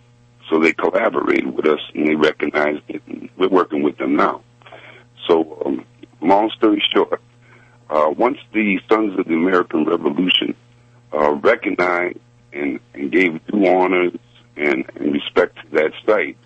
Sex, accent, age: male, American, 60-79